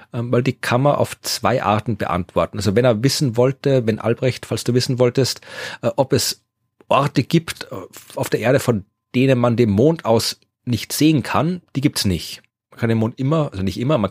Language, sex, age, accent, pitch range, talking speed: German, male, 40-59, German, 105-135 Hz, 205 wpm